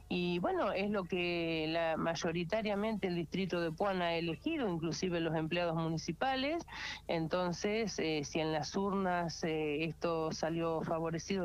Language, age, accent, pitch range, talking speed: Spanish, 40-59, Argentinian, 165-195 Hz, 140 wpm